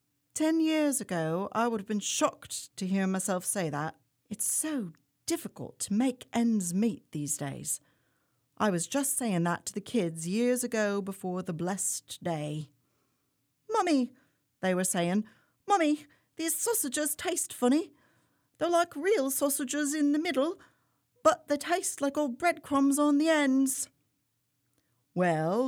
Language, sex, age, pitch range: English, female, 40-59, 185-285 Hz